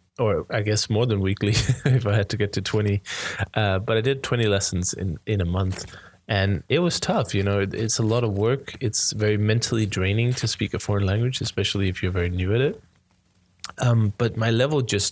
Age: 20-39